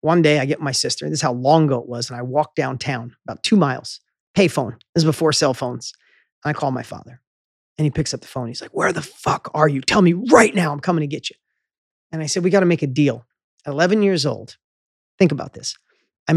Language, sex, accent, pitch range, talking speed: English, male, American, 140-175 Hz, 260 wpm